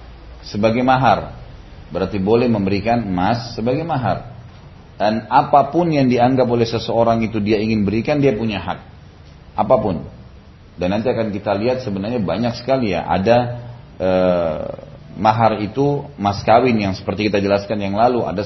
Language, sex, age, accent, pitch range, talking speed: Indonesian, male, 30-49, native, 100-130 Hz, 145 wpm